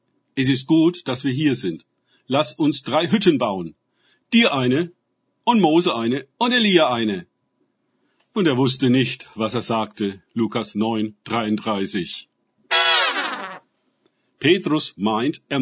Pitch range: 120-175 Hz